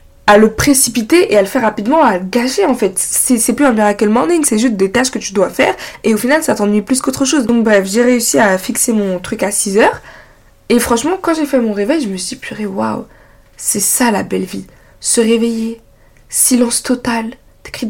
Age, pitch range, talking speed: 20-39, 220-270 Hz, 230 wpm